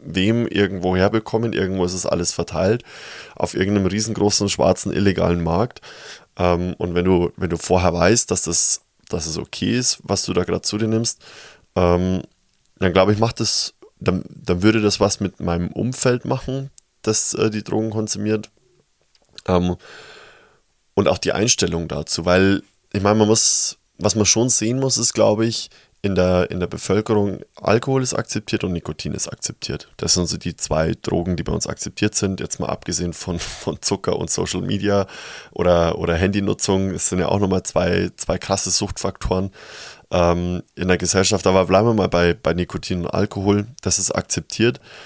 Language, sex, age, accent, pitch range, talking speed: German, male, 20-39, German, 90-110 Hz, 165 wpm